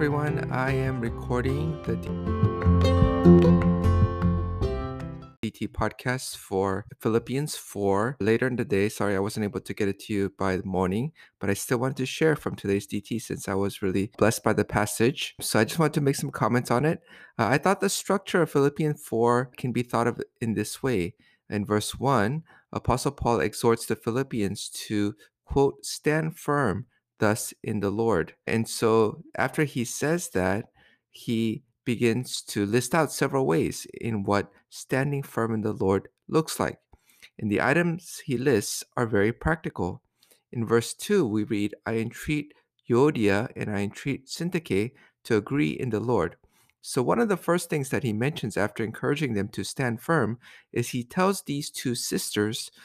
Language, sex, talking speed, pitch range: English, male, 175 wpm, 105-140 Hz